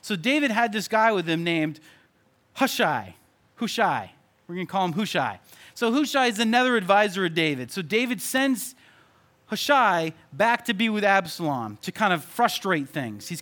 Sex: male